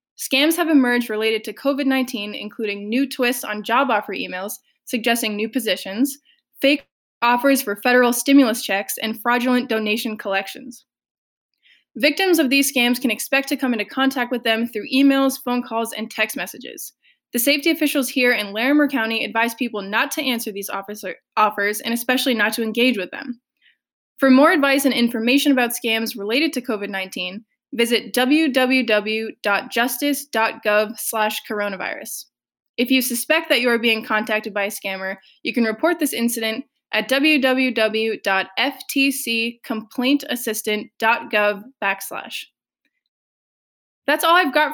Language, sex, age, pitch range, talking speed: English, female, 10-29, 220-275 Hz, 140 wpm